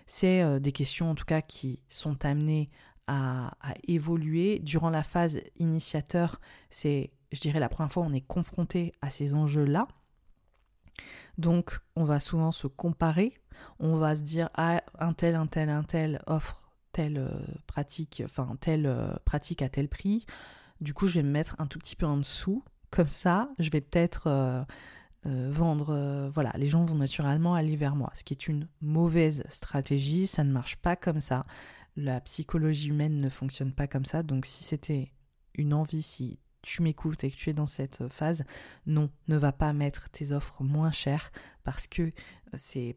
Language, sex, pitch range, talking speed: French, female, 140-165 Hz, 185 wpm